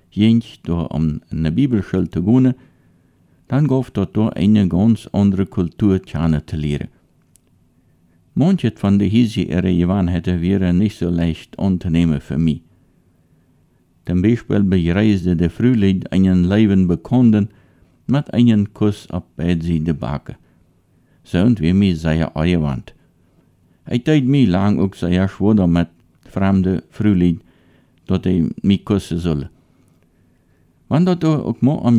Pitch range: 85-110 Hz